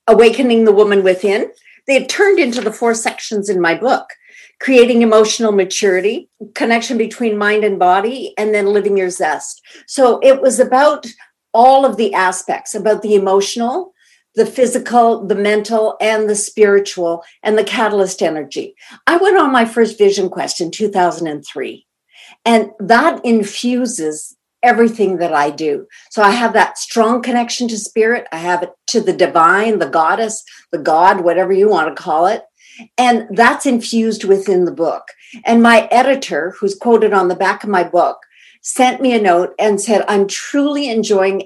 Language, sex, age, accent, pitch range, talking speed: English, female, 50-69, American, 200-245 Hz, 165 wpm